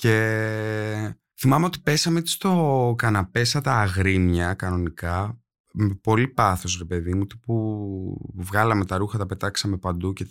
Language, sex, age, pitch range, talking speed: Greek, male, 20-39, 90-135 Hz, 145 wpm